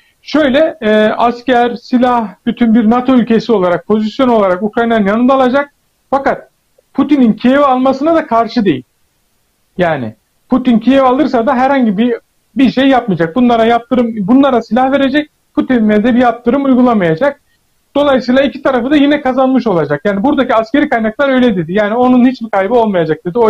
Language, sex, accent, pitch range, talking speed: Turkish, male, native, 210-255 Hz, 155 wpm